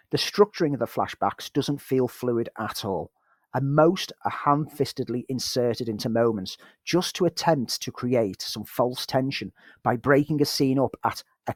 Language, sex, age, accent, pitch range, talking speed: English, male, 40-59, British, 120-170 Hz, 165 wpm